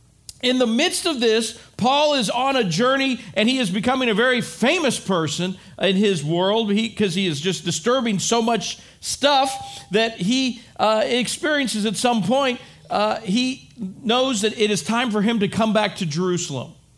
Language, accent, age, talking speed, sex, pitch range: English, American, 50-69, 175 wpm, male, 190-240 Hz